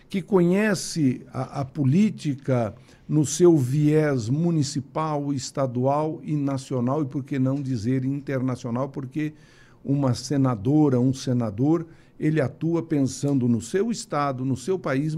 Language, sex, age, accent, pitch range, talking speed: Portuguese, male, 60-79, Brazilian, 125-155 Hz, 125 wpm